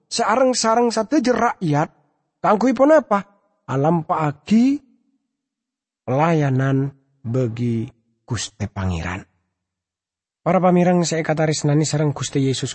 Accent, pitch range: Indonesian, 150-195 Hz